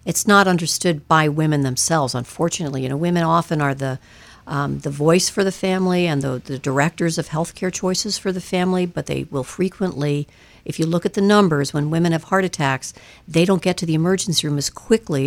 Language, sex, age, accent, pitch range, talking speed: English, female, 60-79, American, 135-170 Hz, 210 wpm